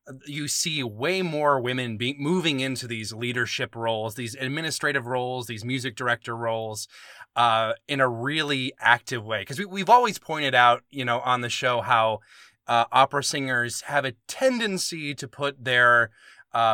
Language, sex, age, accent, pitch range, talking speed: English, male, 30-49, American, 120-150 Hz, 160 wpm